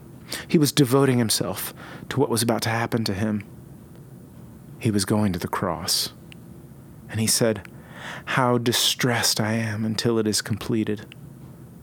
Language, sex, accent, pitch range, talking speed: English, male, American, 115-155 Hz, 145 wpm